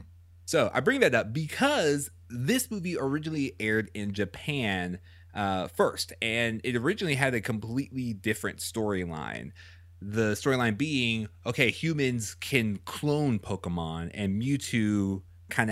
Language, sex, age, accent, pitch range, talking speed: English, male, 30-49, American, 90-120 Hz, 125 wpm